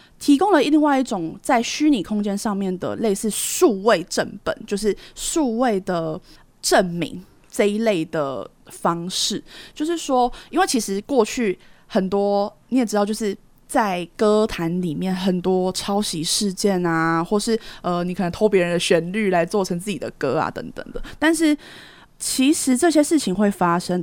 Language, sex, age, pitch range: Chinese, female, 20-39, 180-245 Hz